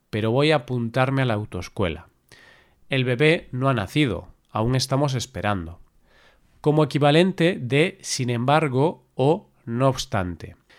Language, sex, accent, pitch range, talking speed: Spanish, male, Spanish, 120-145 Hz, 130 wpm